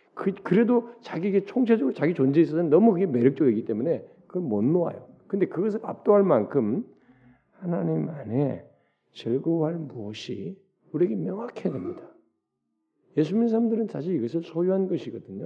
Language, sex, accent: Korean, male, native